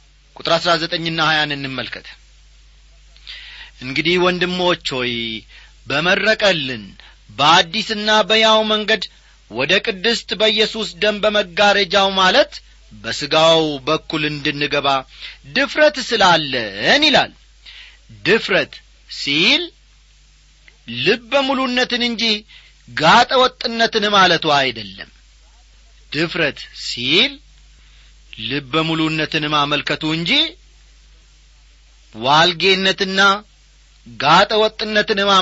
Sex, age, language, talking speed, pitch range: male, 40-59, Amharic, 70 wpm, 140-215 Hz